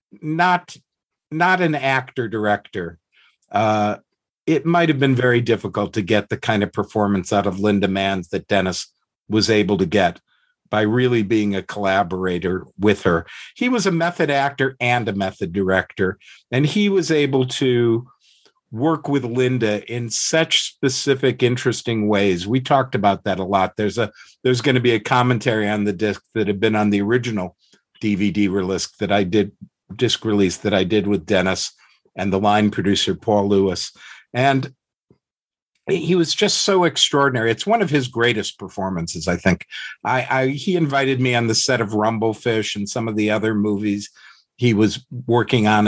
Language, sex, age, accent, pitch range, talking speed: English, male, 50-69, American, 105-135 Hz, 175 wpm